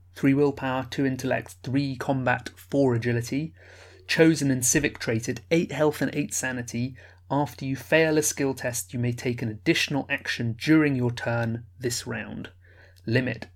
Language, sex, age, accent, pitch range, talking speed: English, male, 30-49, British, 115-150 Hz, 155 wpm